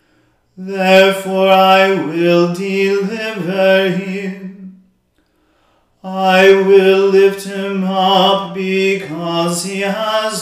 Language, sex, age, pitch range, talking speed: English, male, 40-59, 175-195 Hz, 75 wpm